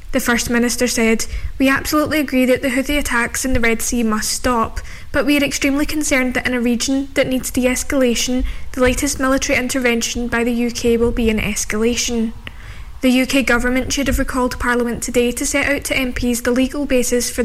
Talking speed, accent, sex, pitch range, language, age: 195 wpm, British, female, 235-260 Hz, English, 10-29